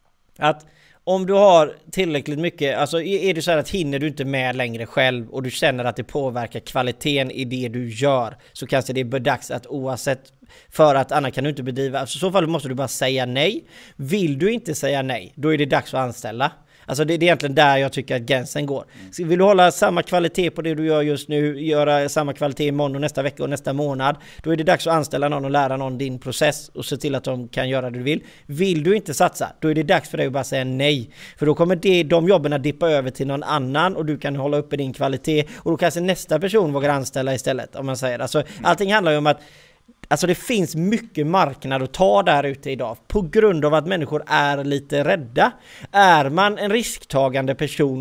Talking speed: 235 wpm